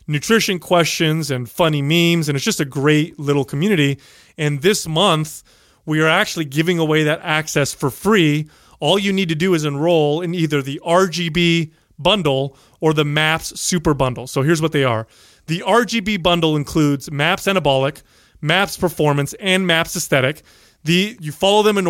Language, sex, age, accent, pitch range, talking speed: English, male, 30-49, American, 140-175 Hz, 170 wpm